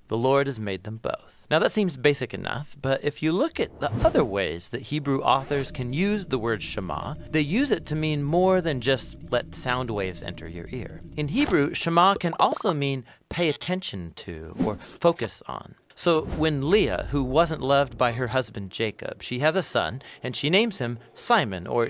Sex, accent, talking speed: male, American, 200 wpm